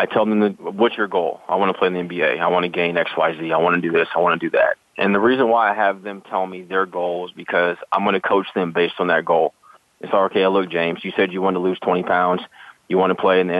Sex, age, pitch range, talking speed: male, 30-49, 95-115 Hz, 320 wpm